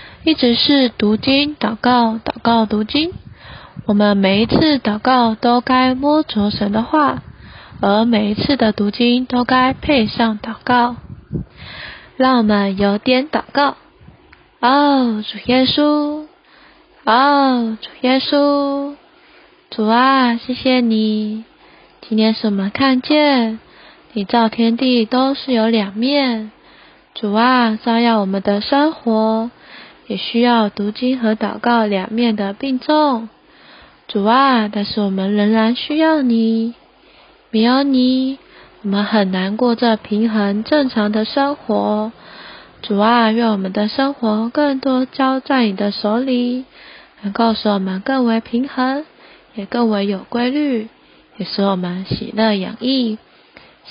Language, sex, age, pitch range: Chinese, female, 10-29, 215-270 Hz